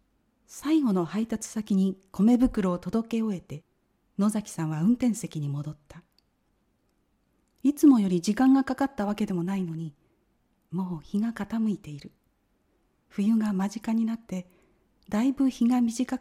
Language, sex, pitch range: Japanese, female, 180-255 Hz